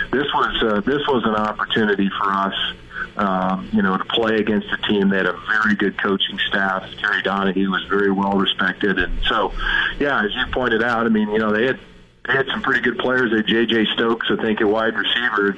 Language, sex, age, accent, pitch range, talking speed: English, male, 40-59, American, 100-115 Hz, 230 wpm